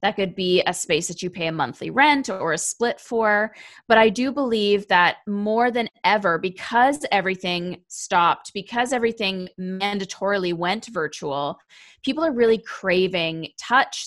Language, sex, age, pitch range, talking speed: English, female, 20-39, 170-220 Hz, 155 wpm